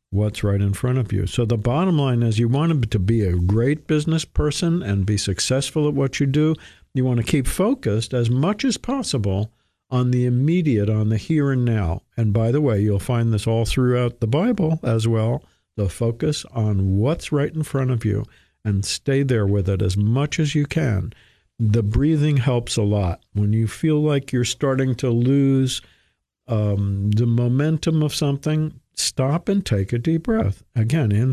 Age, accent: 50-69, American